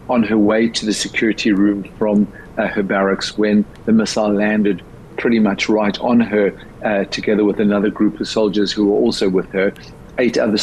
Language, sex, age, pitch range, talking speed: English, male, 50-69, 100-110 Hz, 190 wpm